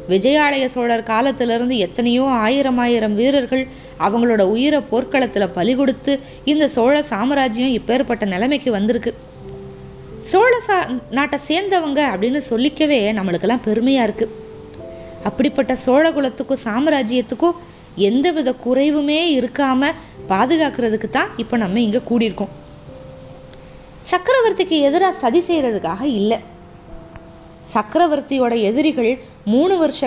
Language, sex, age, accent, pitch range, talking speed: Tamil, female, 20-39, native, 225-295 Hz, 100 wpm